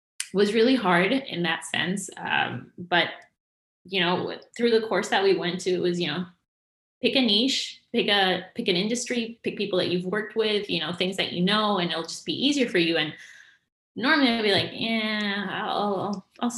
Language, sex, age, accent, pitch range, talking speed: English, female, 20-39, American, 165-210 Hz, 205 wpm